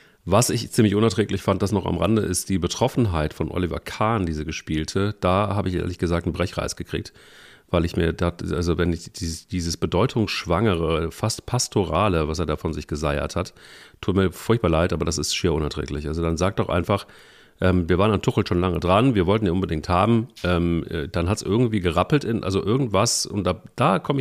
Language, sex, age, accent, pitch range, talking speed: German, male, 40-59, German, 85-105 Hz, 205 wpm